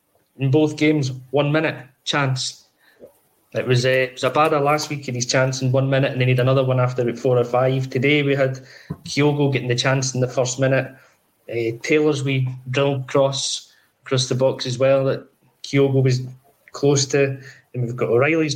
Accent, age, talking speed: British, 20-39, 195 wpm